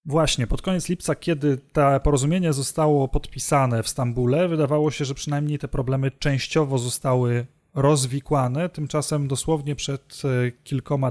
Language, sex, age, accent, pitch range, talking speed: Polish, male, 30-49, native, 130-155 Hz, 130 wpm